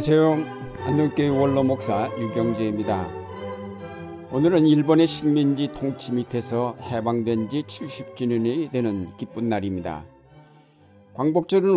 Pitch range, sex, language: 115-145 Hz, male, Korean